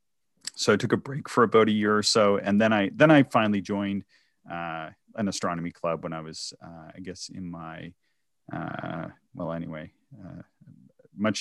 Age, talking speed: 30-49, 185 wpm